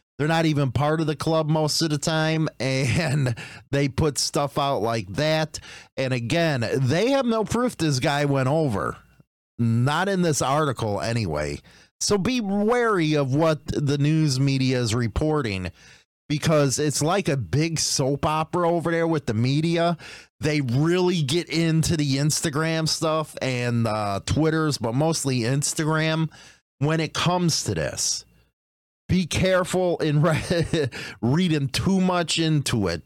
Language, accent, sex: English, American, male